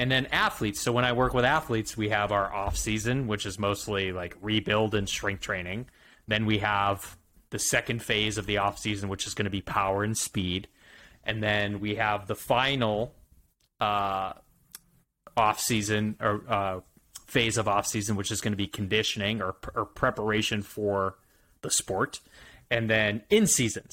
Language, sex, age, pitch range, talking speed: English, male, 20-39, 100-115 Hz, 165 wpm